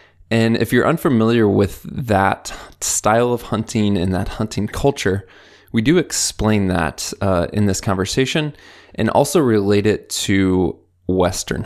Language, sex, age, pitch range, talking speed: English, male, 20-39, 95-115 Hz, 140 wpm